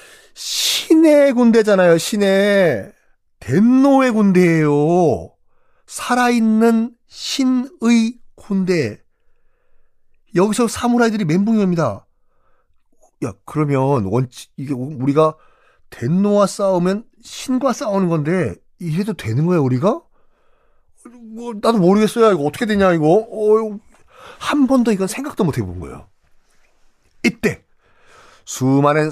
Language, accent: Korean, native